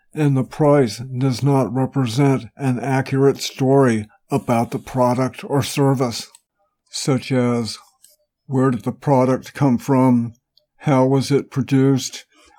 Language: English